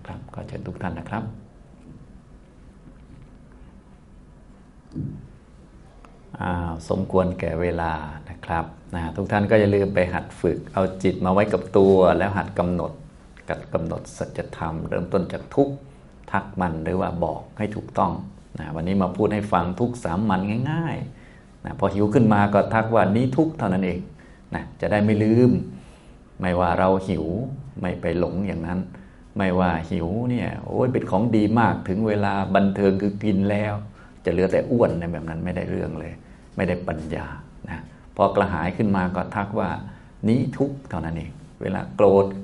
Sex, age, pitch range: male, 30-49, 85-105 Hz